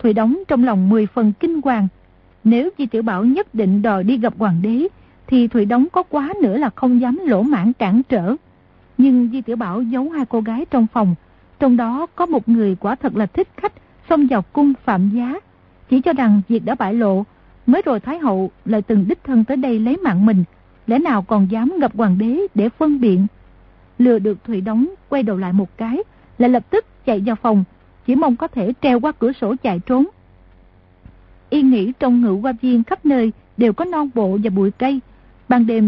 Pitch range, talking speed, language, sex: 210-260 Hz, 215 wpm, Vietnamese, female